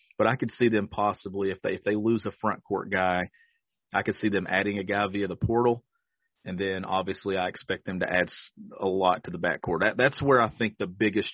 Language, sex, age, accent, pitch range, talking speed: English, male, 40-59, American, 95-115 Hz, 245 wpm